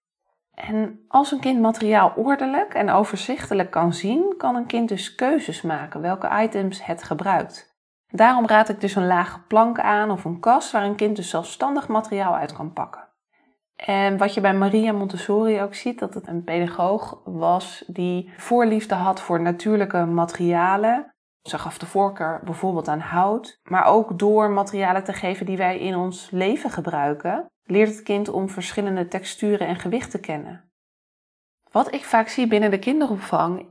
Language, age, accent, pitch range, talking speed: Dutch, 20-39, Dutch, 180-225 Hz, 170 wpm